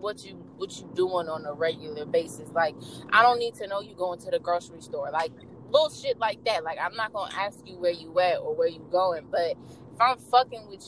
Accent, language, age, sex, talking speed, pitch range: American, English, 20-39, female, 245 wpm, 185-290 Hz